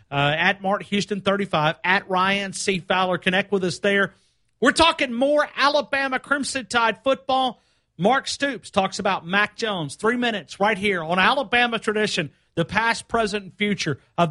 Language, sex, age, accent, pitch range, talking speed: English, male, 50-69, American, 200-255 Hz, 170 wpm